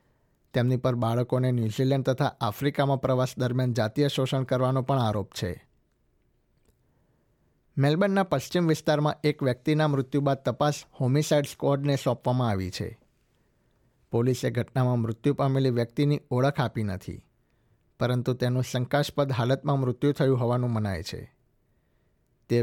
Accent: native